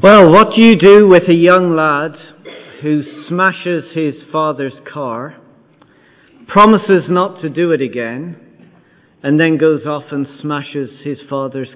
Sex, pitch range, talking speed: male, 150-190 Hz, 145 wpm